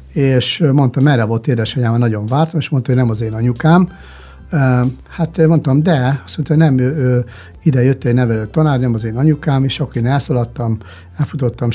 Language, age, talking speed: Hungarian, 60-79, 190 wpm